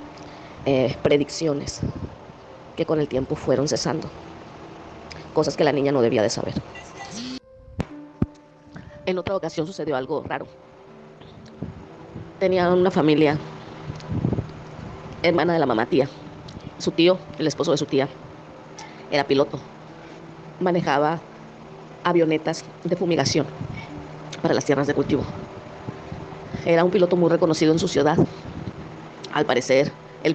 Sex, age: female, 30-49